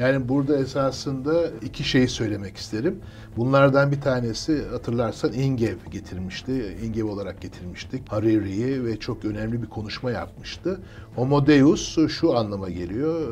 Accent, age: native, 60-79